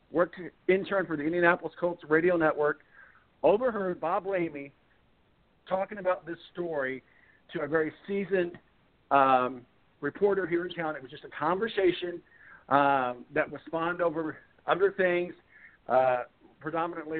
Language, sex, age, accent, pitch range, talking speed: English, male, 50-69, American, 145-175 Hz, 135 wpm